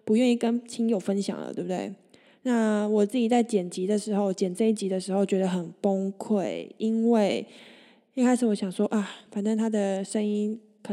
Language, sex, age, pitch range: Chinese, female, 20-39, 200-230 Hz